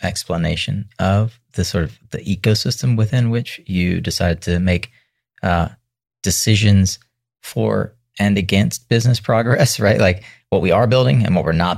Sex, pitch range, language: male, 90-115 Hz, English